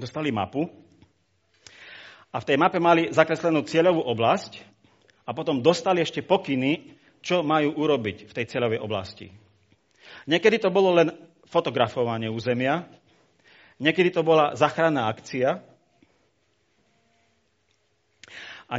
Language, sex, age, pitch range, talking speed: Slovak, male, 40-59, 105-160 Hz, 110 wpm